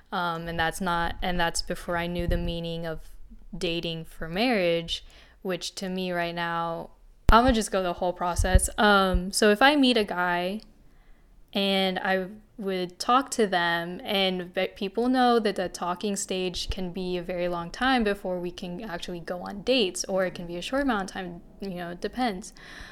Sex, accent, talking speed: female, American, 190 wpm